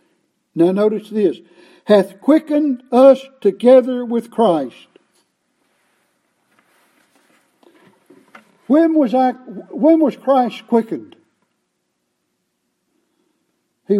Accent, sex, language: American, male, English